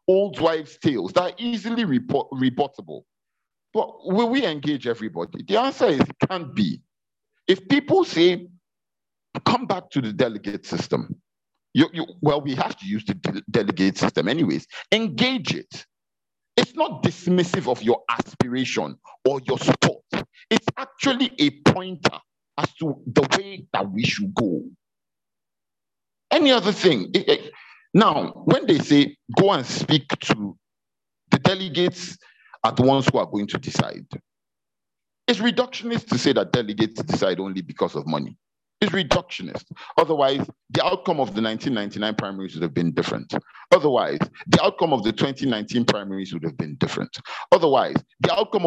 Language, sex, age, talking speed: English, male, 50-69, 155 wpm